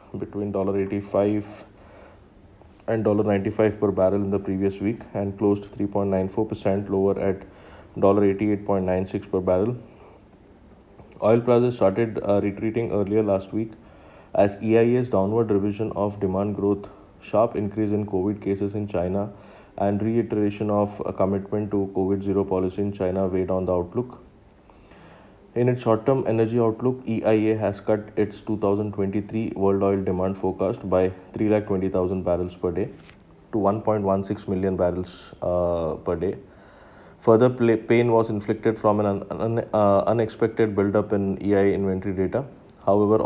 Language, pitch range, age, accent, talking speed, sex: English, 95-110 Hz, 30-49, Indian, 130 wpm, male